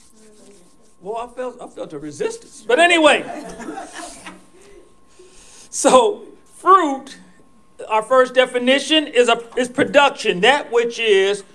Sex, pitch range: male, 230-300 Hz